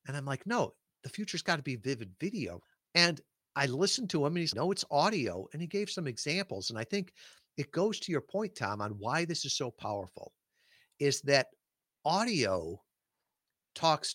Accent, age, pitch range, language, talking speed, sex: American, 50-69, 115-170 Hz, English, 195 wpm, male